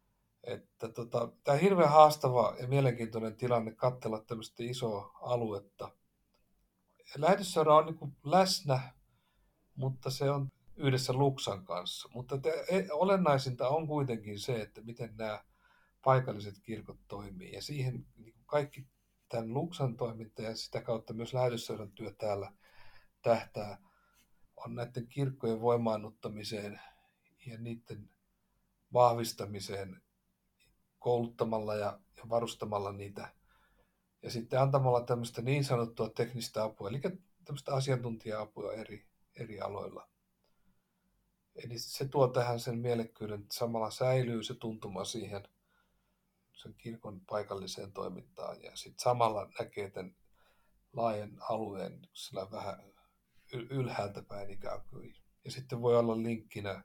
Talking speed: 115 wpm